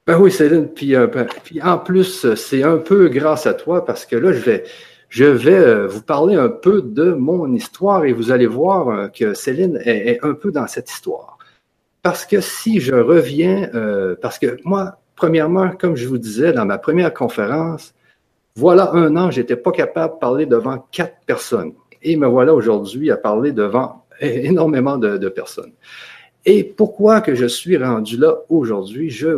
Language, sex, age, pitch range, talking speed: French, male, 50-69, 125-195 Hz, 185 wpm